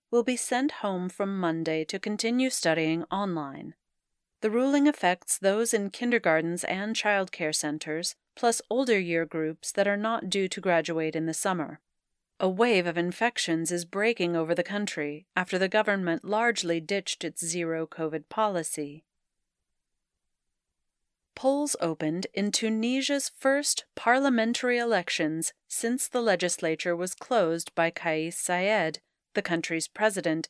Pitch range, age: 165-220 Hz, 40-59